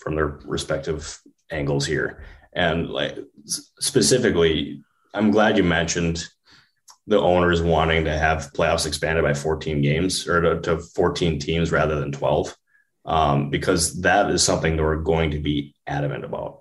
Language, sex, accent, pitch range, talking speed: English, male, American, 75-85 Hz, 150 wpm